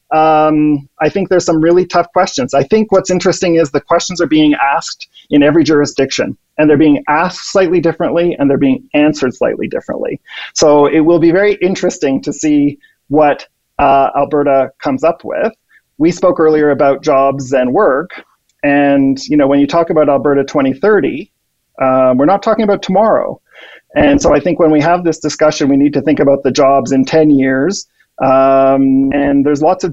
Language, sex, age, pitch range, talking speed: English, male, 40-59, 140-180 Hz, 185 wpm